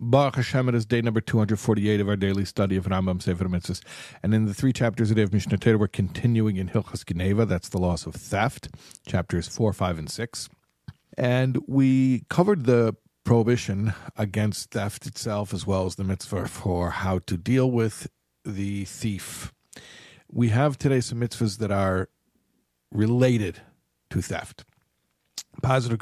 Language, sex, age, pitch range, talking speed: English, male, 50-69, 90-115 Hz, 160 wpm